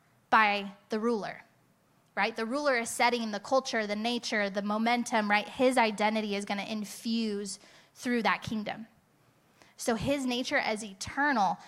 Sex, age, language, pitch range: female, 10-29, English, 210-255 Hz